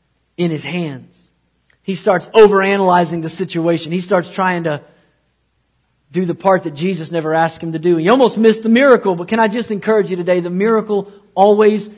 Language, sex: English, male